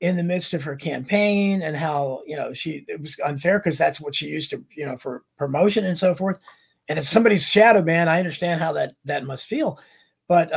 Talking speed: 225 wpm